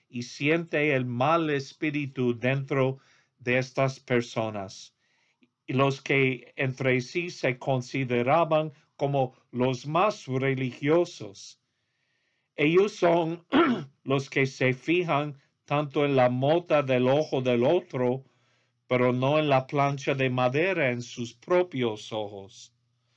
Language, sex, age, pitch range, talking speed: English, male, 50-69, 120-145 Hz, 115 wpm